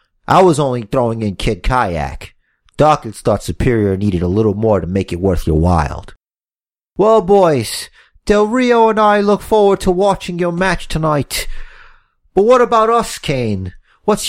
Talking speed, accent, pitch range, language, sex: 165 wpm, American, 110-175 Hz, English, male